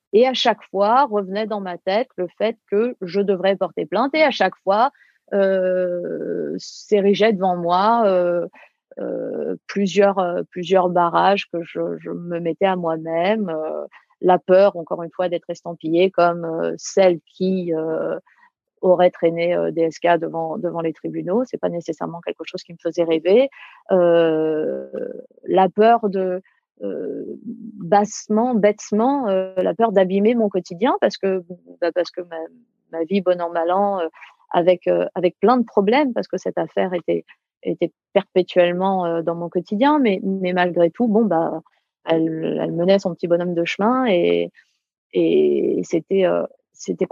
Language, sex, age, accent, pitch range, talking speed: French, female, 30-49, French, 170-210 Hz, 160 wpm